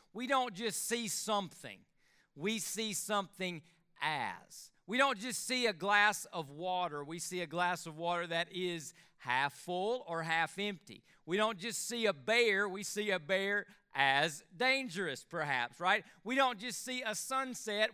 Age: 40-59